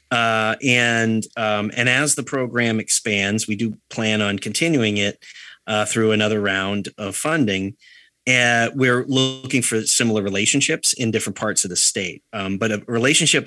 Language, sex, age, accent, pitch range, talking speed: English, male, 30-49, American, 100-120 Hz, 160 wpm